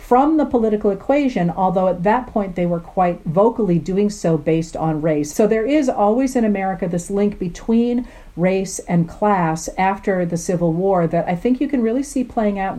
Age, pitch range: 50-69, 175-230 Hz